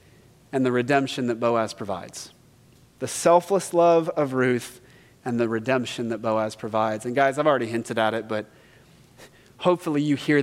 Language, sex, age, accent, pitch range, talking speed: English, male, 30-49, American, 145-210 Hz, 160 wpm